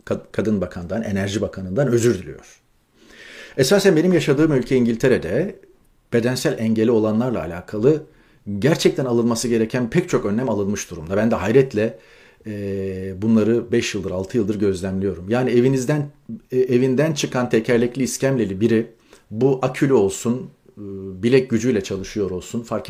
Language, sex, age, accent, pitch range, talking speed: Turkish, male, 40-59, native, 110-130 Hz, 125 wpm